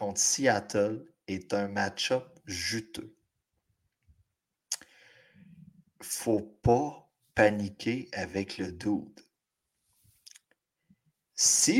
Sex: male